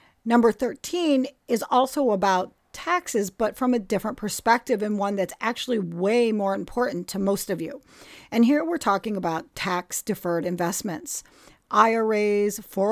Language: English